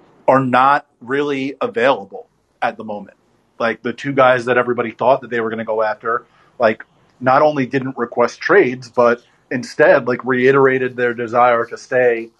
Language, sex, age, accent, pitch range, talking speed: English, male, 30-49, American, 115-135 Hz, 170 wpm